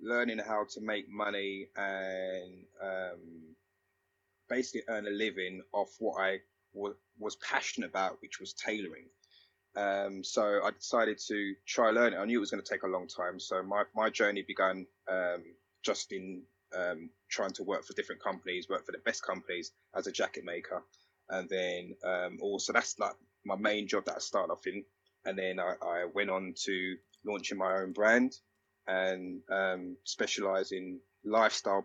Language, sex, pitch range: English, male, 95-100 Hz